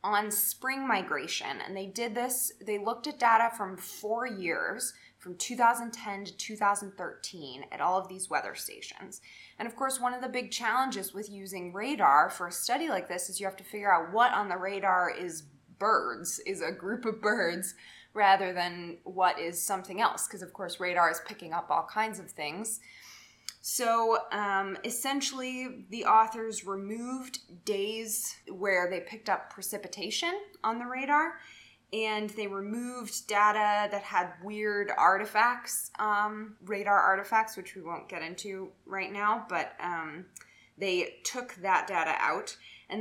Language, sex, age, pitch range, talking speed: English, female, 20-39, 190-230 Hz, 160 wpm